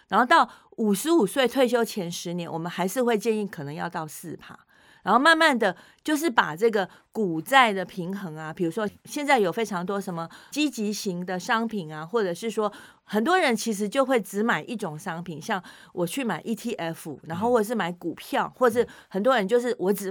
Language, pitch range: Chinese, 175-240 Hz